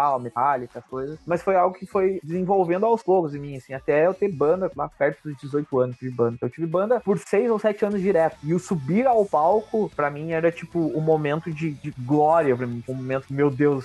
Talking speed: 245 wpm